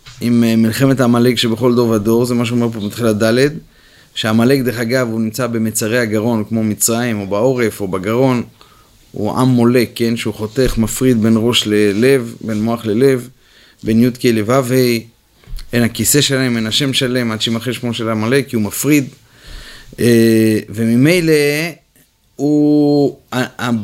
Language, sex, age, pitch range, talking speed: Hebrew, male, 30-49, 115-135 Hz, 145 wpm